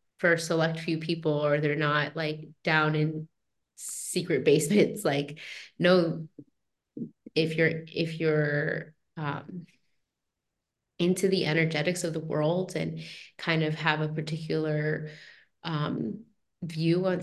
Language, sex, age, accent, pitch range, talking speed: English, female, 20-39, American, 150-165 Hz, 120 wpm